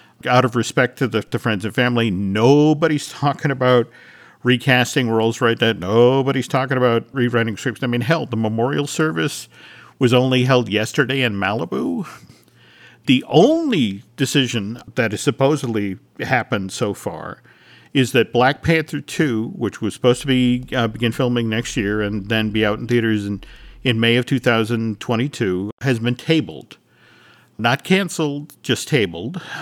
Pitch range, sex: 110-130 Hz, male